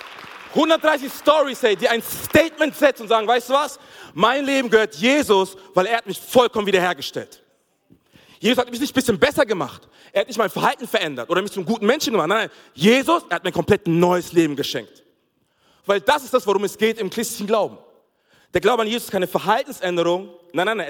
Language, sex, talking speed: German, male, 205 wpm